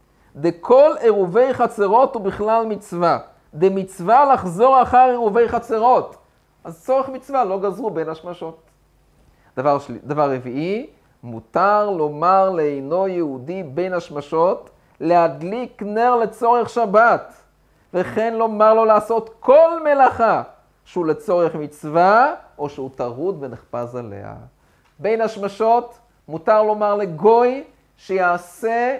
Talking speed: 110 wpm